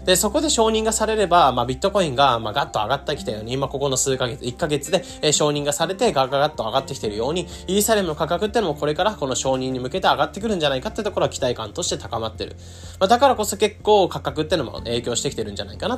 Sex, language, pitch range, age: male, Japanese, 120-195 Hz, 20-39